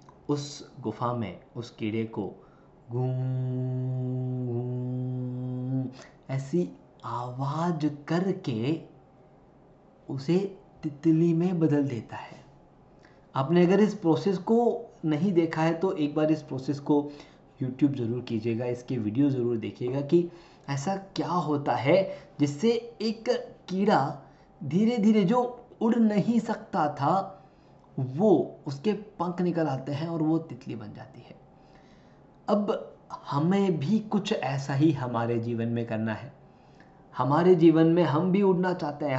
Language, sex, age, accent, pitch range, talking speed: Hindi, male, 20-39, native, 130-180 Hz, 125 wpm